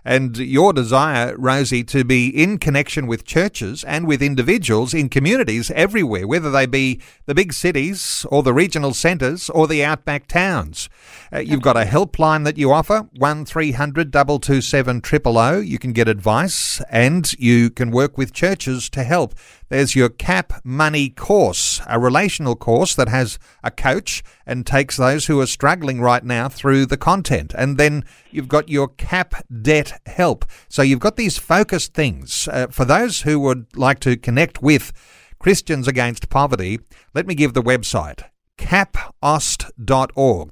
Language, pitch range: English, 120-150 Hz